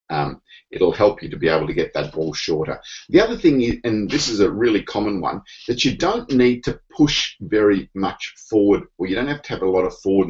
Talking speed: 245 wpm